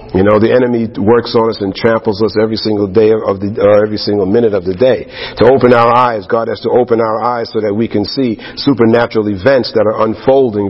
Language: English